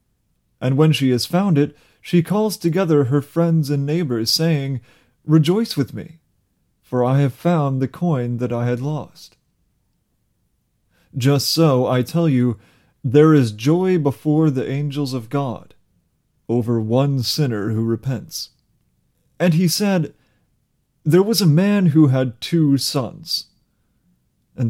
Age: 30-49